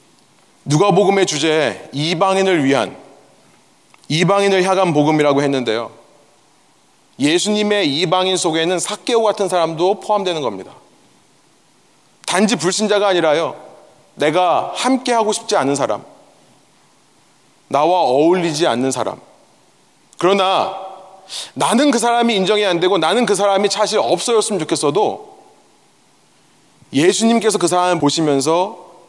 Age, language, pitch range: 30-49, Korean, 150-210 Hz